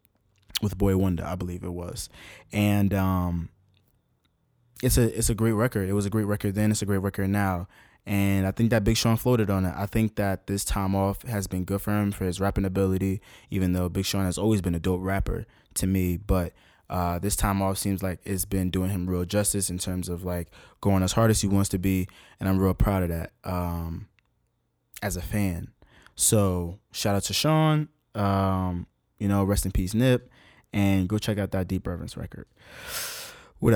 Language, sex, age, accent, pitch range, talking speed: English, male, 20-39, American, 90-105 Hz, 210 wpm